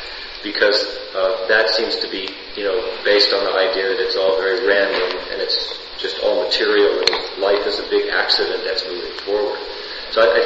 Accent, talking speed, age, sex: American, 195 wpm, 40-59, male